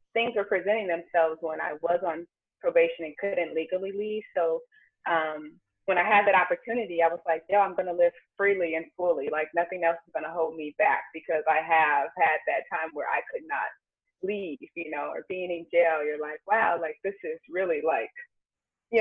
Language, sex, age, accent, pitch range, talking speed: English, female, 20-39, American, 160-210 Hz, 210 wpm